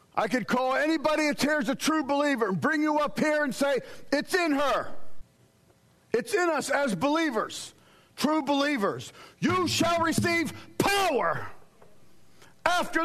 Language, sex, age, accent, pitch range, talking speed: English, male, 50-69, American, 215-315 Hz, 145 wpm